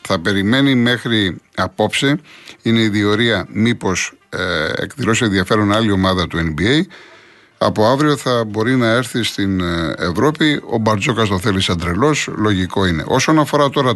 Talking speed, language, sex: 140 wpm, Greek, male